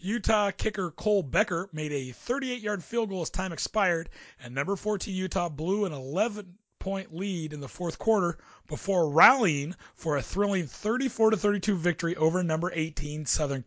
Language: English